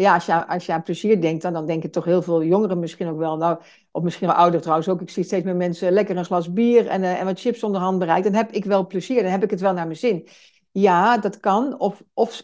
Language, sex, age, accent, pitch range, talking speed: Dutch, female, 60-79, Dutch, 180-225 Hz, 285 wpm